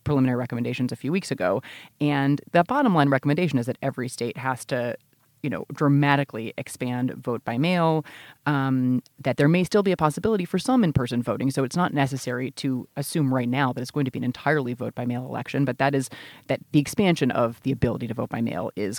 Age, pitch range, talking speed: 30-49, 130-150 Hz, 220 wpm